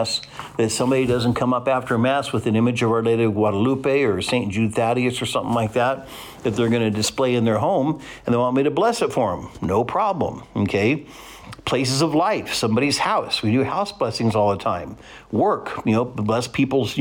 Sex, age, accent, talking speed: male, 60-79, American, 215 wpm